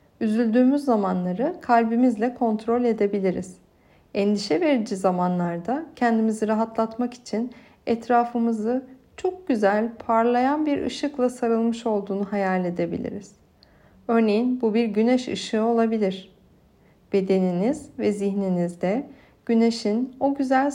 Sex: female